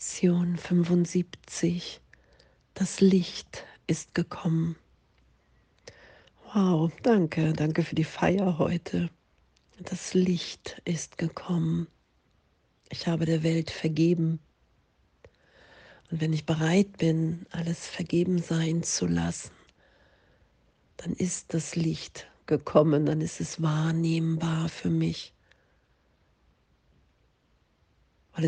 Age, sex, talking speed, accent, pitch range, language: 40-59, female, 90 wpm, German, 150-170 Hz, German